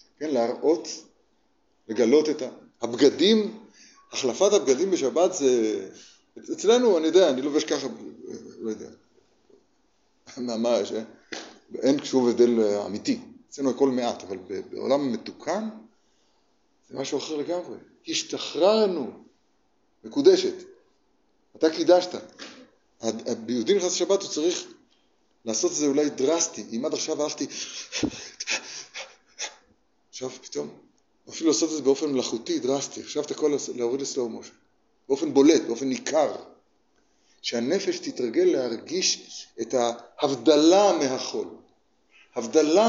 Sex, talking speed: male, 105 wpm